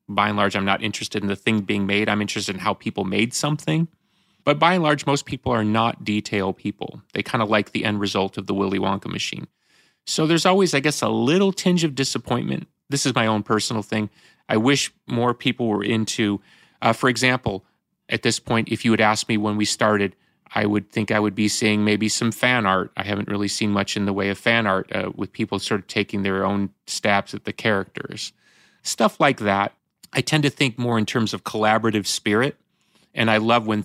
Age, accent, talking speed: 30-49, American, 225 wpm